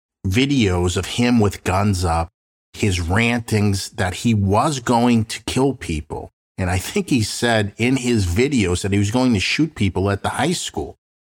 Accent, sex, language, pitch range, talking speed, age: American, male, English, 90-120 Hz, 180 wpm, 50-69